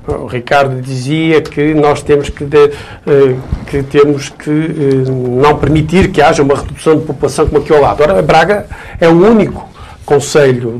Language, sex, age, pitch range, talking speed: Portuguese, male, 50-69, 135-175 Hz, 150 wpm